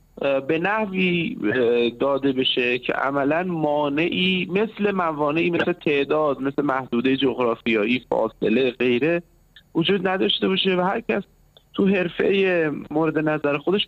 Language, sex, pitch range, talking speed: Persian, male, 135-195 Hz, 115 wpm